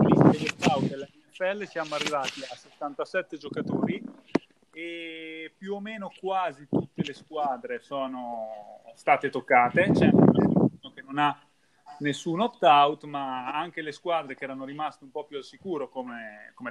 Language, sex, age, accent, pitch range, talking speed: Italian, male, 30-49, native, 130-160 Hz, 135 wpm